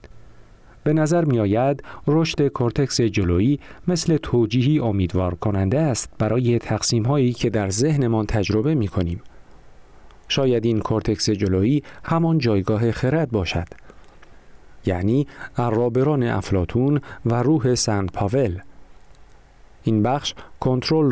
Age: 40-59